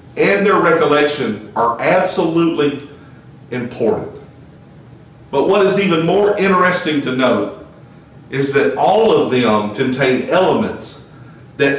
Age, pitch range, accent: 50-69, 125-170 Hz, American